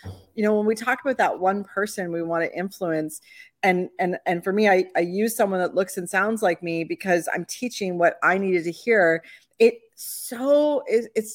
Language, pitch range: English, 185-240 Hz